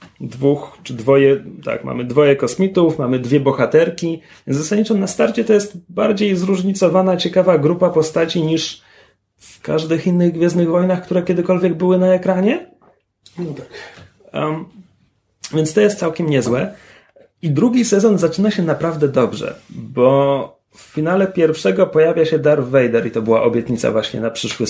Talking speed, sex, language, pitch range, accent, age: 150 wpm, male, Polish, 130-180 Hz, native, 30-49